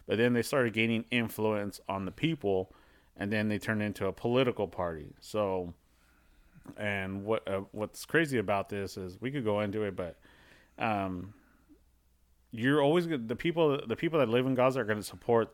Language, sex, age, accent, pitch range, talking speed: English, male, 30-49, American, 95-125 Hz, 180 wpm